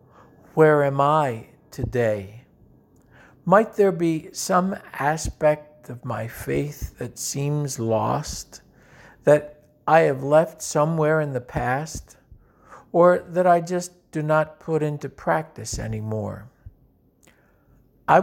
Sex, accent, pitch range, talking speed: male, American, 130-165 Hz, 110 wpm